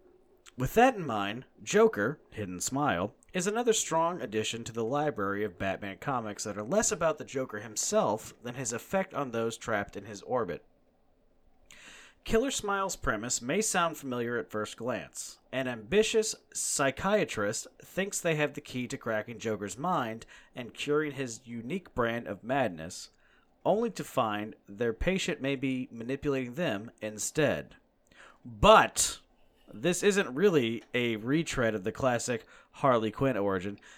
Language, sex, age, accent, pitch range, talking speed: English, male, 40-59, American, 105-155 Hz, 145 wpm